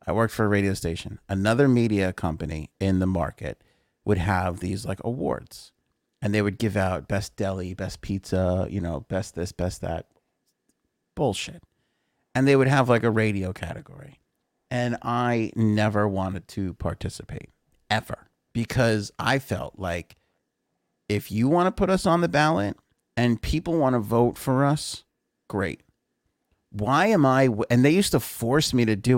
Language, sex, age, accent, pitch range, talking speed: English, male, 30-49, American, 95-125 Hz, 165 wpm